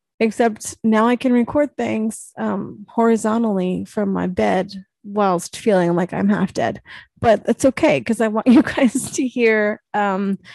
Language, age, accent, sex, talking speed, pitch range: English, 20-39, American, female, 160 wpm, 195-230 Hz